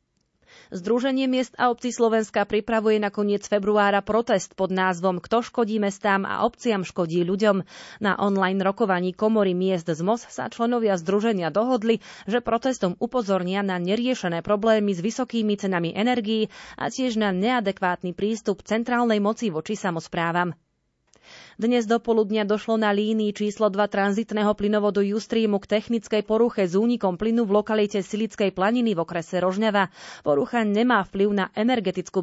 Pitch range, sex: 185-225 Hz, female